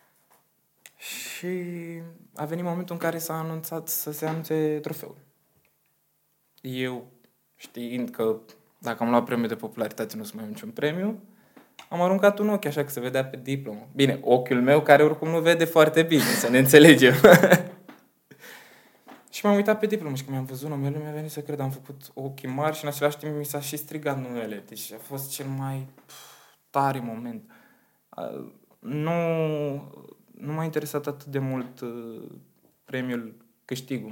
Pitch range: 130-160 Hz